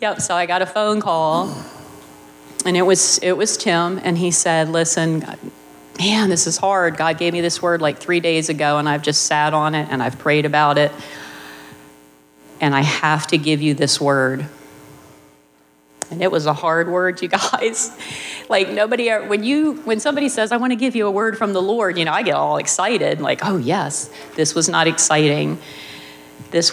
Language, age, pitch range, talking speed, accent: English, 40-59, 130-170 Hz, 195 wpm, American